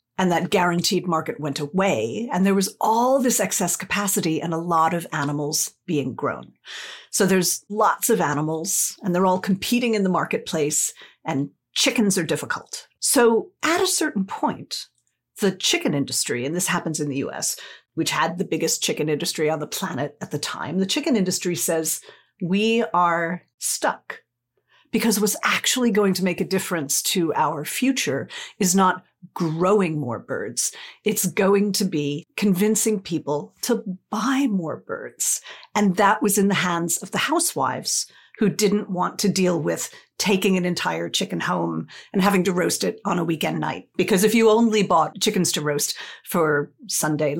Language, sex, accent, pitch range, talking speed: English, female, American, 160-210 Hz, 170 wpm